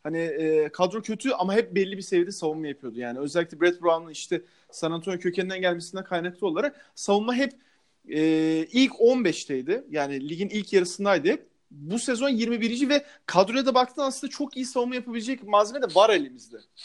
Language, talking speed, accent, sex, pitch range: Turkish, 165 wpm, native, male, 160-220 Hz